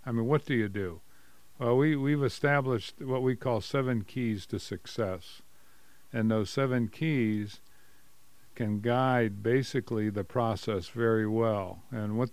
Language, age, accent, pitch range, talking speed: English, 50-69, American, 105-130 Hz, 145 wpm